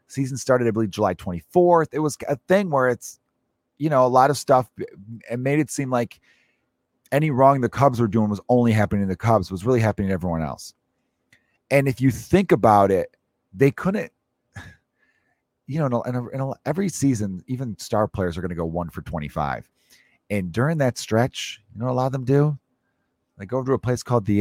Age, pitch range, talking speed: 30-49, 105-135 Hz, 210 wpm